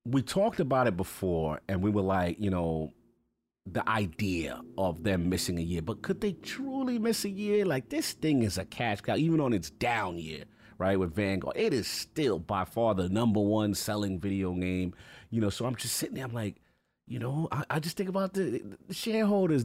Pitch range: 100-135 Hz